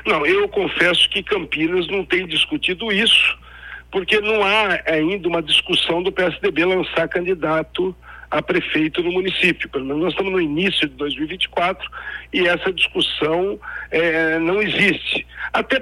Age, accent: 60-79, Brazilian